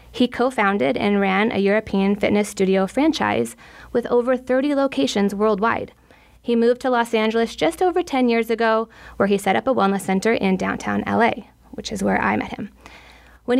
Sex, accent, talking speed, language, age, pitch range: female, American, 180 wpm, English, 20-39, 195-245 Hz